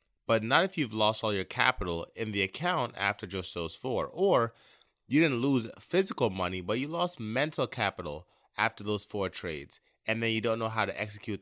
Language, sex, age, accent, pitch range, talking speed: English, male, 30-49, American, 100-135 Hz, 200 wpm